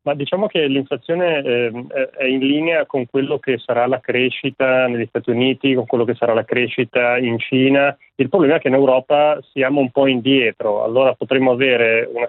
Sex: male